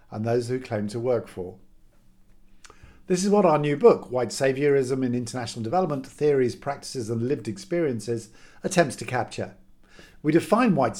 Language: English